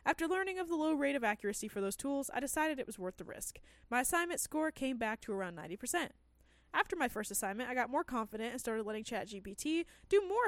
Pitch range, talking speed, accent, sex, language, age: 215-305 Hz, 230 wpm, American, female, English, 20-39